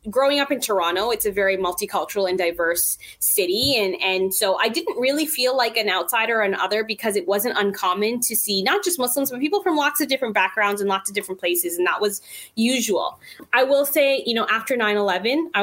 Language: English